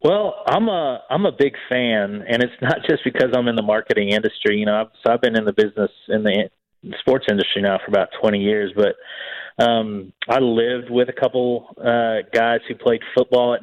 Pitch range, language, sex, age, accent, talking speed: 100-115 Hz, English, male, 30-49, American, 210 wpm